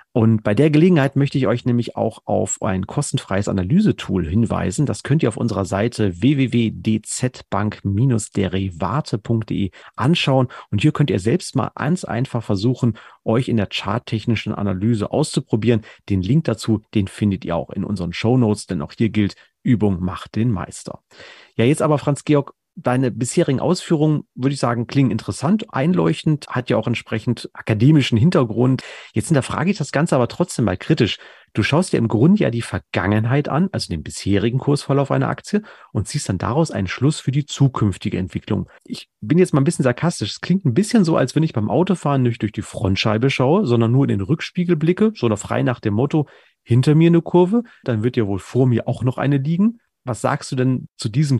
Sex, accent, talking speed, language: male, German, 190 wpm, German